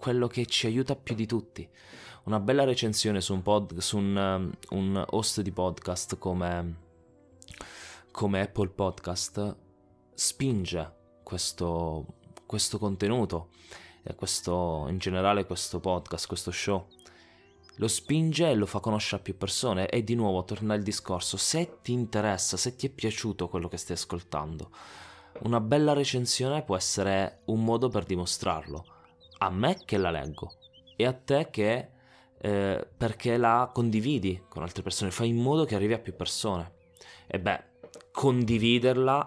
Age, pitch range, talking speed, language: 20-39, 90-115 Hz, 145 wpm, Italian